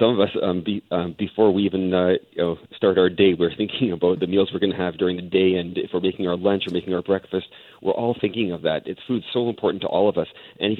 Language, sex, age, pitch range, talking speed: English, male, 40-59, 90-110 Hz, 290 wpm